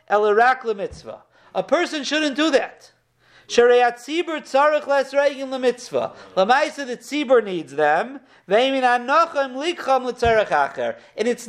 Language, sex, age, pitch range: English, male, 50-69, 195-275 Hz